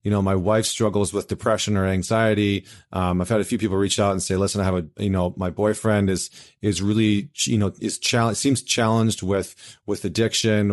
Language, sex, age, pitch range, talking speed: English, male, 30-49, 95-120 Hz, 220 wpm